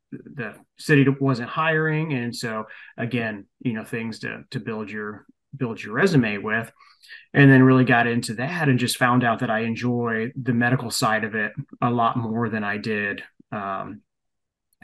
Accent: American